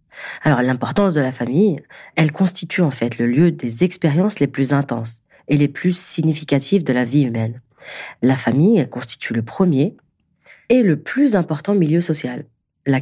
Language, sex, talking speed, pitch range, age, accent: French, female, 170 wpm, 125-165 Hz, 40-59, French